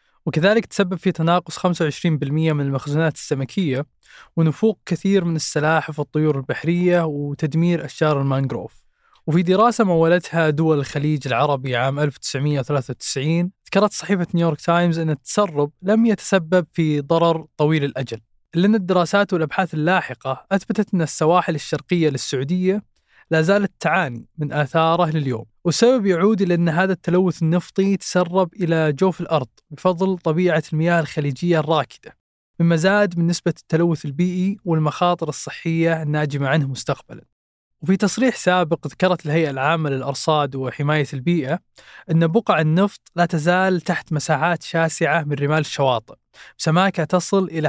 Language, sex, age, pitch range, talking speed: Arabic, male, 20-39, 150-180 Hz, 130 wpm